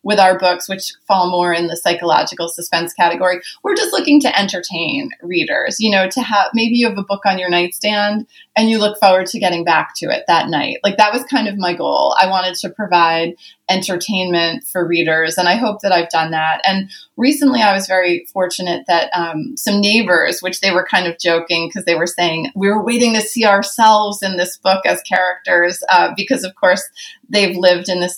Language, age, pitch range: English, 30-49, 175-215 Hz